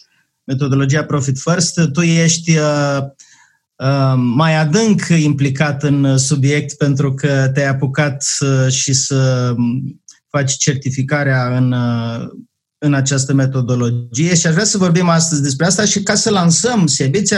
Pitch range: 135-175 Hz